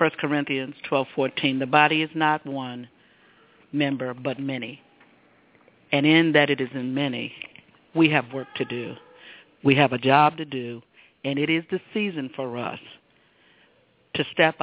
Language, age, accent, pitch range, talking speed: English, 50-69, American, 135-150 Hz, 155 wpm